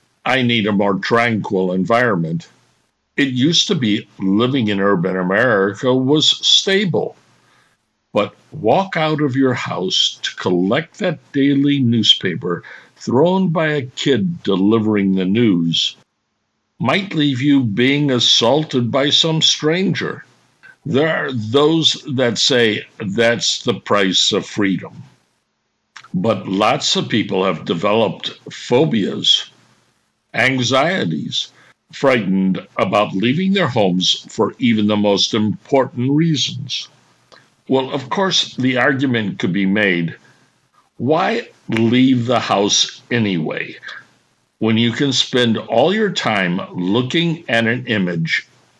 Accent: American